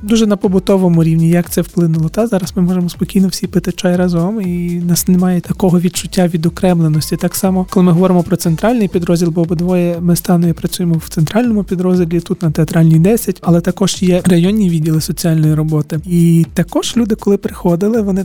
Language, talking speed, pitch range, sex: Ukrainian, 185 wpm, 175-200 Hz, male